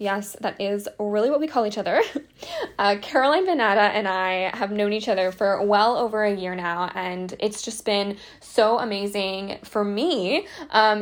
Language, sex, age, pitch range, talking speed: English, female, 20-39, 200-255 Hz, 180 wpm